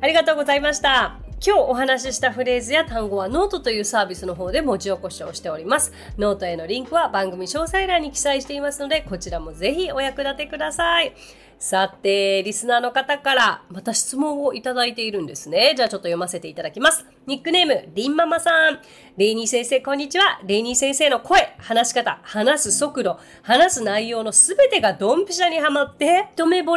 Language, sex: Japanese, female